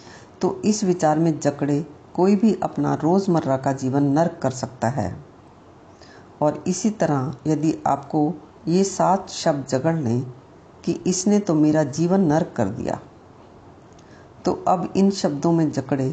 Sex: female